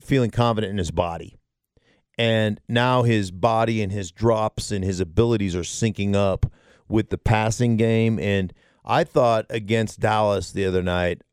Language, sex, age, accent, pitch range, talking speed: English, male, 40-59, American, 100-120 Hz, 160 wpm